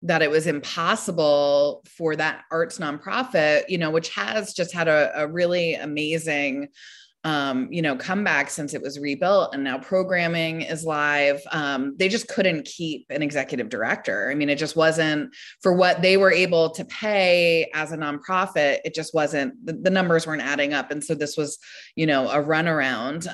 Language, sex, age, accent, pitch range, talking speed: English, female, 20-39, American, 150-185 Hz, 185 wpm